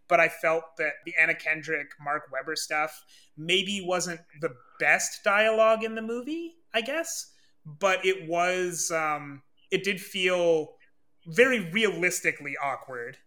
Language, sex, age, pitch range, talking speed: English, male, 30-49, 155-190 Hz, 135 wpm